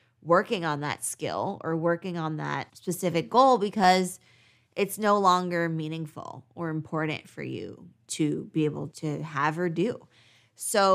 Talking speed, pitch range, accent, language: 150 wpm, 155-190 Hz, American, English